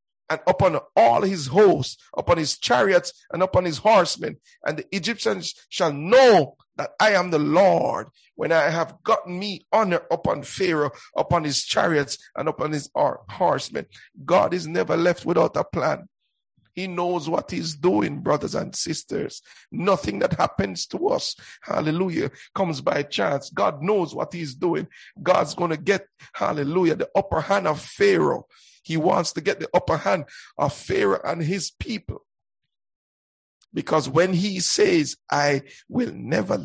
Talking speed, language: 155 wpm, English